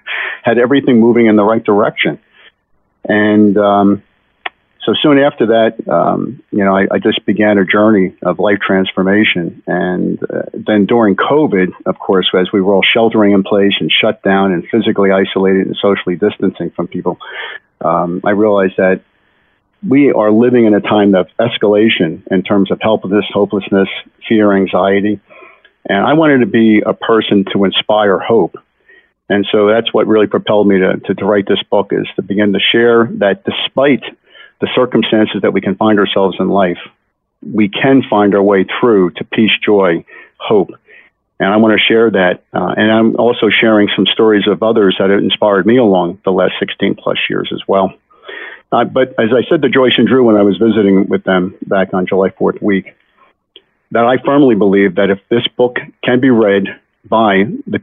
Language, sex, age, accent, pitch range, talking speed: English, male, 50-69, American, 95-115 Hz, 185 wpm